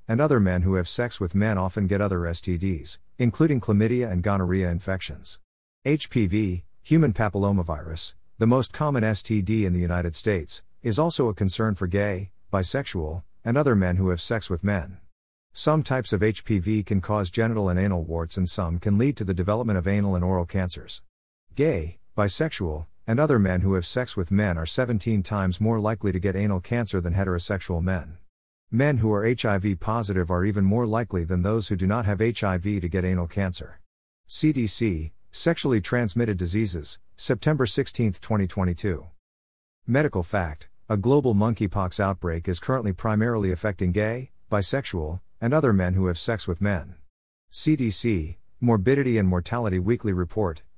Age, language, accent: 50-69, English, American